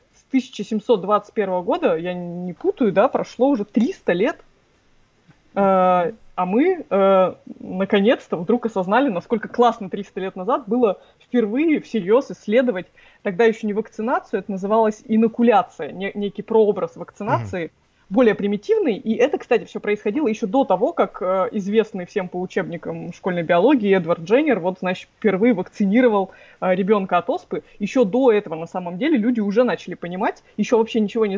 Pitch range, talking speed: 190-245 Hz, 145 wpm